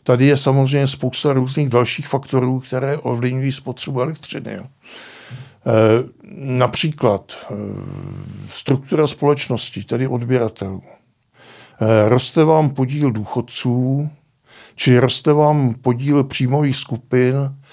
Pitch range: 120-145 Hz